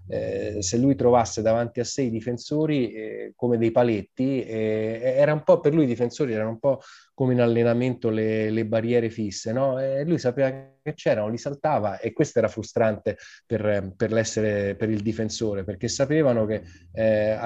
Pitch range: 105-120 Hz